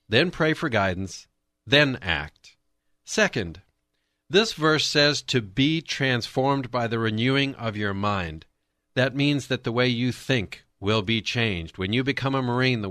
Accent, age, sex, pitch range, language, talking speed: American, 50-69, male, 100-140 Hz, English, 165 wpm